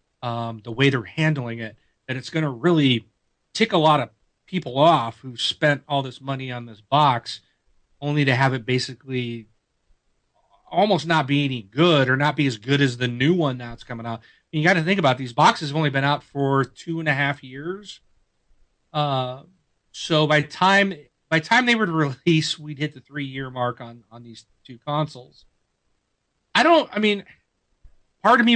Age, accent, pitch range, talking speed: 40-59, American, 130-170 Hz, 195 wpm